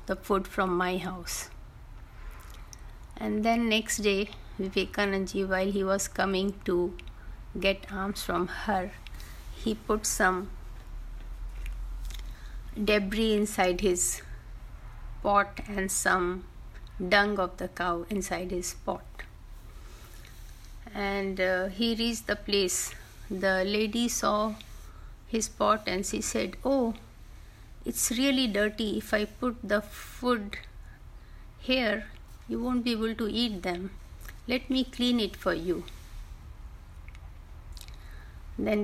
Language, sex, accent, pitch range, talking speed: Hindi, female, native, 180-215 Hz, 115 wpm